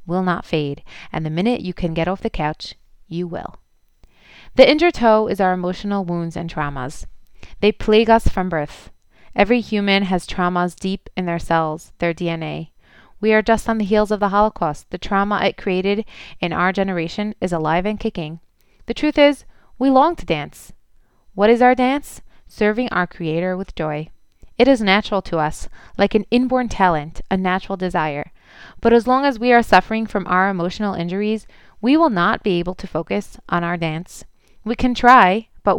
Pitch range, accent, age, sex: 175-225 Hz, American, 20-39, female